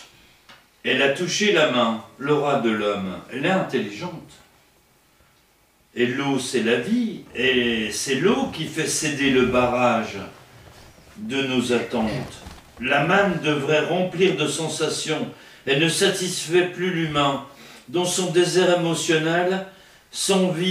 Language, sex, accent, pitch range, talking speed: English, male, French, 130-185 Hz, 130 wpm